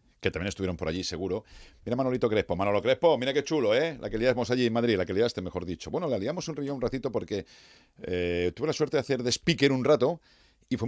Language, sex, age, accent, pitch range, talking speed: Spanish, male, 40-59, Spanish, 90-125 Hz, 260 wpm